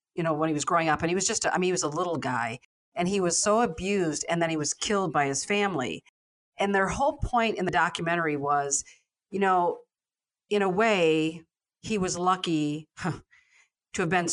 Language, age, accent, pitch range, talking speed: English, 50-69, American, 155-190 Hz, 210 wpm